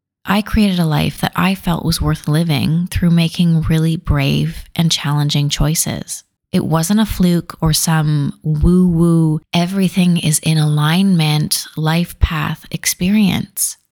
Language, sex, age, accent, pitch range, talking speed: English, female, 30-49, American, 160-195 Hz, 120 wpm